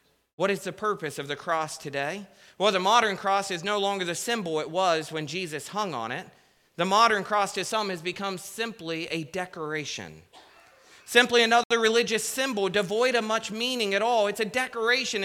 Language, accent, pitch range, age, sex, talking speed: English, American, 165-210 Hz, 30-49, male, 185 wpm